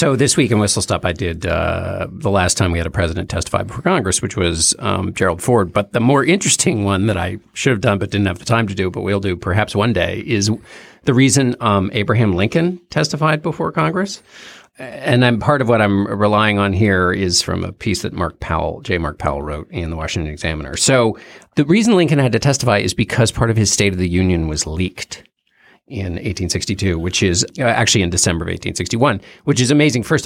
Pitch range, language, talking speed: 95-130 Hz, English, 220 wpm